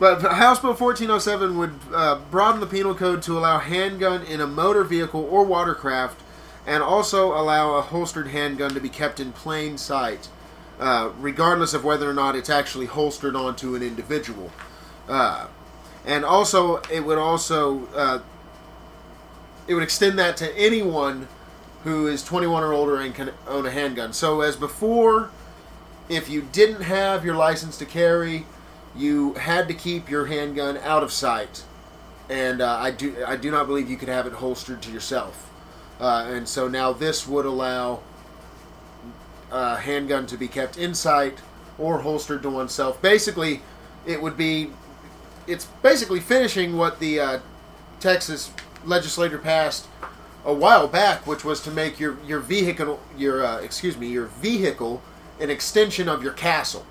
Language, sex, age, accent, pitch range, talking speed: English, male, 30-49, American, 140-175 Hz, 160 wpm